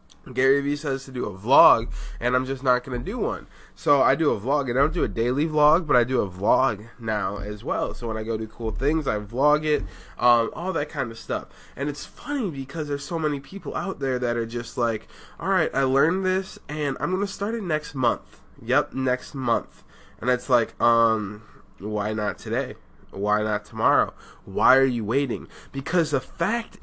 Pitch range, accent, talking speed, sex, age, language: 120-165 Hz, American, 215 wpm, male, 20-39, English